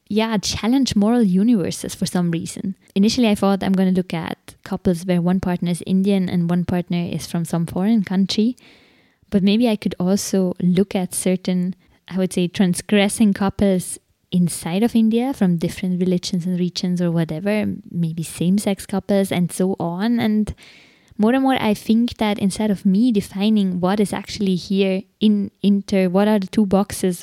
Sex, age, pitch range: female, 20-39, 180-210 Hz